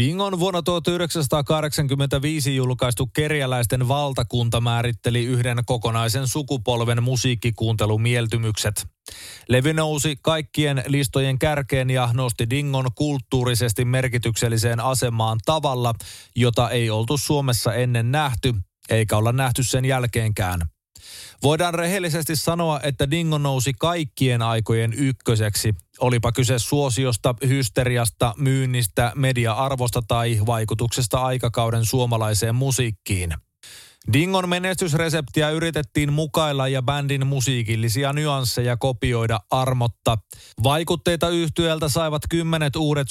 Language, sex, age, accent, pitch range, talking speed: Finnish, male, 30-49, native, 120-145 Hz, 95 wpm